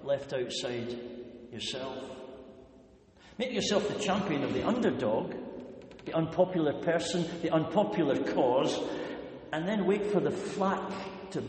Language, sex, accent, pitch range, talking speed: English, male, British, 135-195 Hz, 120 wpm